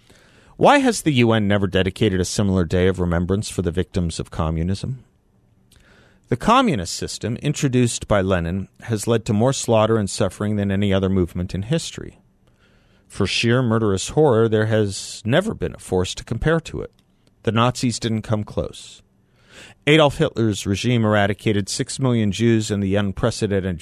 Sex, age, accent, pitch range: male, 40-59, American, 95-115 Hz